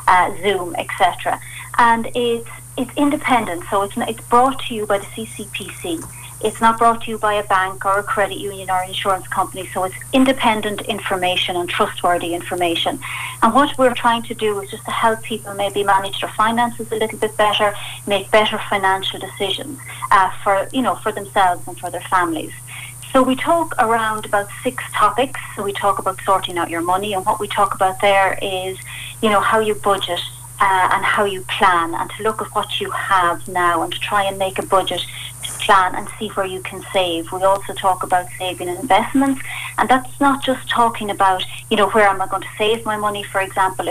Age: 30-49